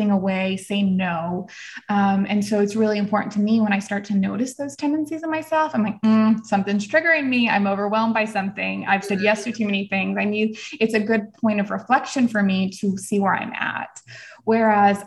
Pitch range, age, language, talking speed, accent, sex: 200-225 Hz, 20-39, English, 215 wpm, American, female